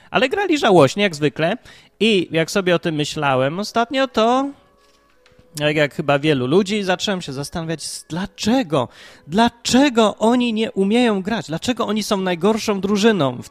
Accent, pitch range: native, 145-210 Hz